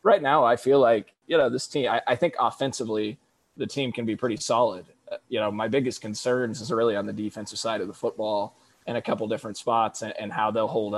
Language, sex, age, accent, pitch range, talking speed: English, male, 20-39, American, 105-120 Hz, 240 wpm